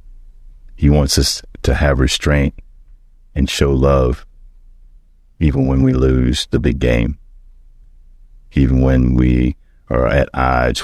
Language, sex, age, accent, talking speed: English, male, 40-59, American, 120 wpm